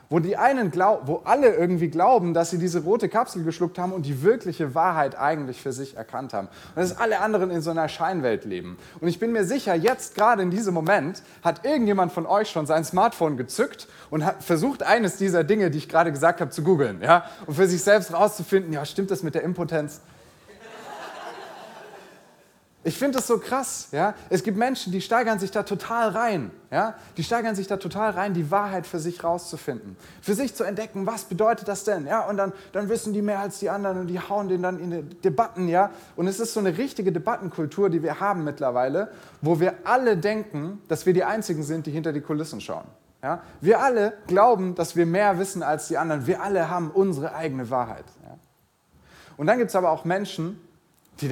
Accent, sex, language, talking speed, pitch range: German, male, German, 210 wpm, 165-205 Hz